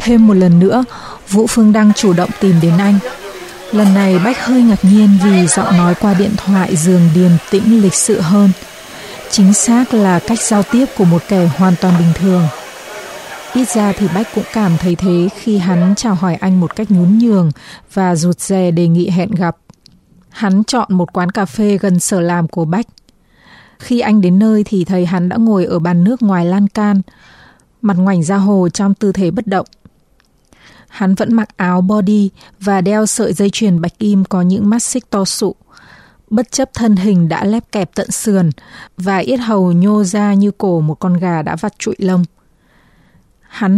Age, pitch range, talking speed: 20-39, 180-215 Hz, 195 wpm